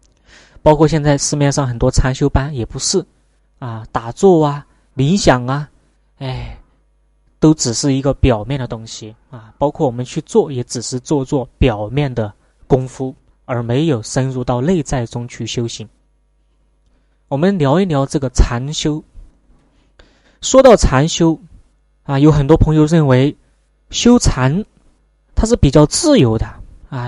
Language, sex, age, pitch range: Chinese, male, 20-39, 125-165 Hz